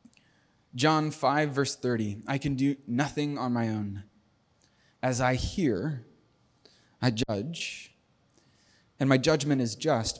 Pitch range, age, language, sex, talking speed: 115-150 Hz, 20-39, English, male, 125 wpm